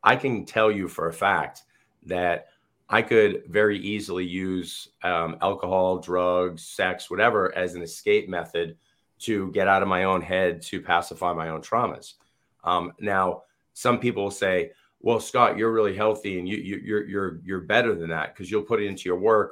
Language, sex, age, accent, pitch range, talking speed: English, male, 30-49, American, 90-115 Hz, 190 wpm